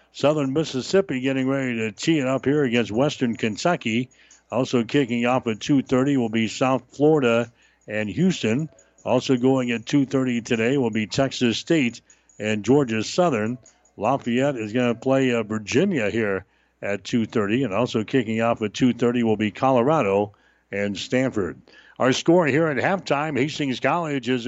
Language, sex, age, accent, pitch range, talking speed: English, male, 60-79, American, 115-135 Hz, 155 wpm